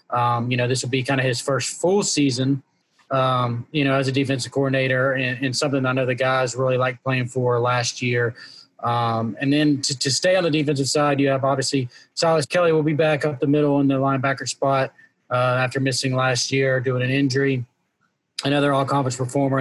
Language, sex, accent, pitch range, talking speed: English, male, American, 130-140 Hz, 210 wpm